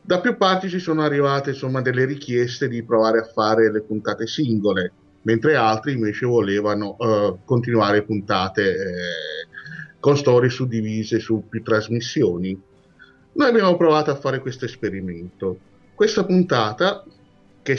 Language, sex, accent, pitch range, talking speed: Italian, male, native, 105-145 Hz, 130 wpm